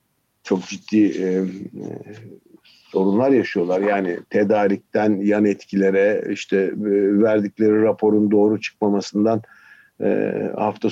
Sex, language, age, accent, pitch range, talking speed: male, Turkish, 50-69, native, 100-115 Hz, 100 wpm